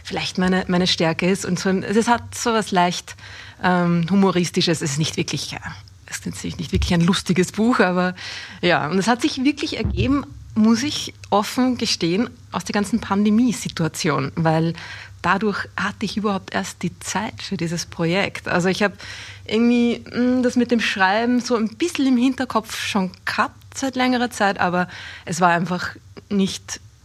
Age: 20-39